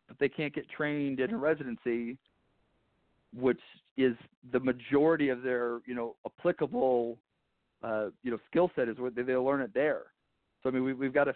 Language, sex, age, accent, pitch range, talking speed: English, male, 40-59, American, 125-145 Hz, 185 wpm